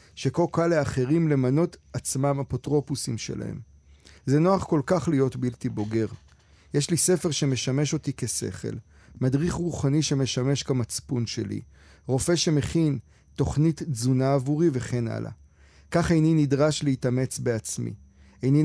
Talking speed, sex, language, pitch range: 120 wpm, male, Hebrew, 120-150 Hz